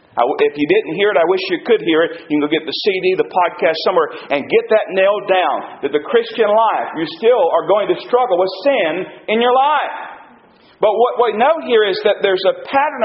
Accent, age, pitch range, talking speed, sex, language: American, 50-69, 190-305 Hz, 230 wpm, male, English